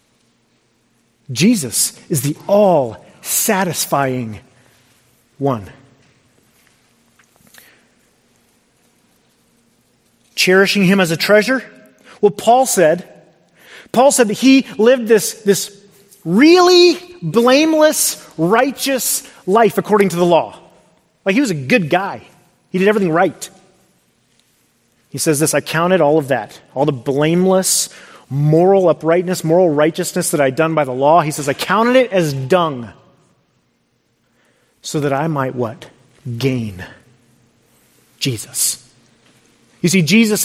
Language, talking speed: English, 115 wpm